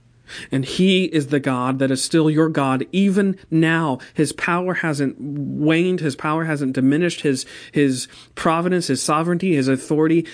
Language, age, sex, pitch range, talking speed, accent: English, 40-59, male, 125-160 Hz, 155 wpm, American